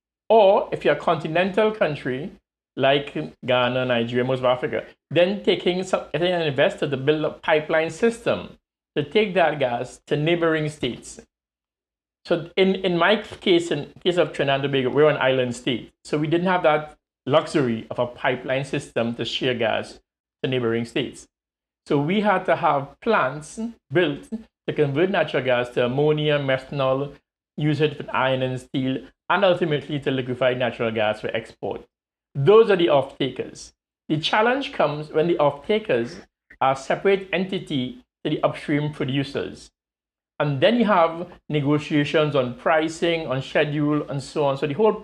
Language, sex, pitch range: English, male, 130-170 Hz